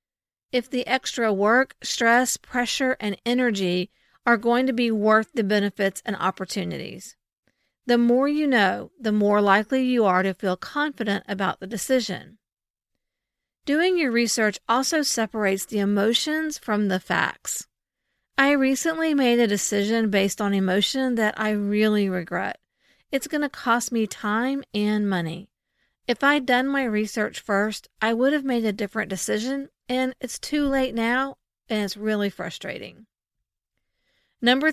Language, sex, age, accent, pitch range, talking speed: English, female, 40-59, American, 205-260 Hz, 145 wpm